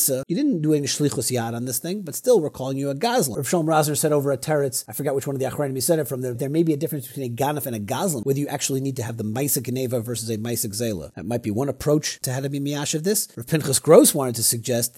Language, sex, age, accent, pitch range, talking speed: English, male, 40-59, American, 130-160 Hz, 310 wpm